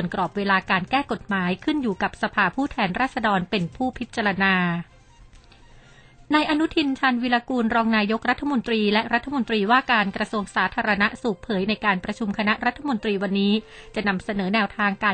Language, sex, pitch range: Thai, female, 195-240 Hz